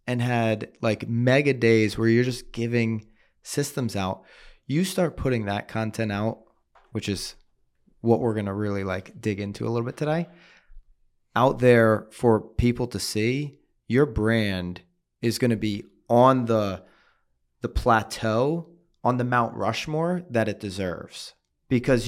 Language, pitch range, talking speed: English, 105-125 Hz, 150 wpm